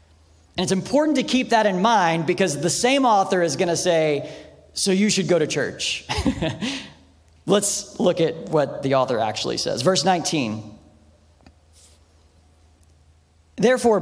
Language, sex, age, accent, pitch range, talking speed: English, male, 40-59, American, 120-190 Hz, 135 wpm